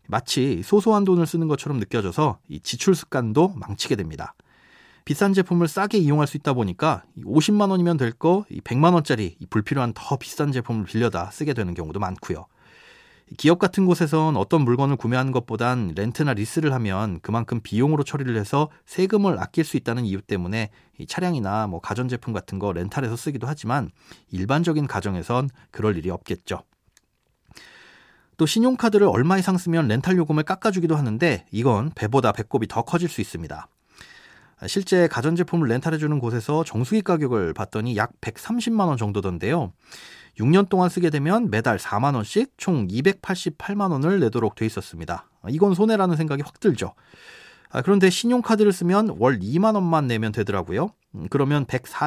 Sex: male